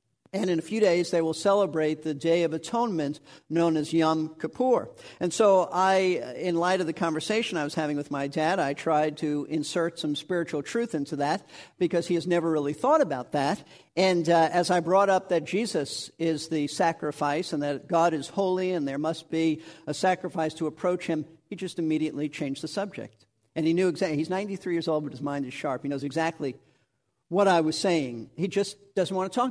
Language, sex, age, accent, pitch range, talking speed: English, male, 50-69, American, 145-180 Hz, 210 wpm